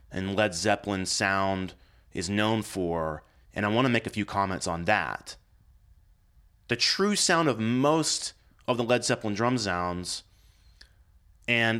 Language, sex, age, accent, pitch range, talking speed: English, male, 30-49, American, 95-125 Hz, 145 wpm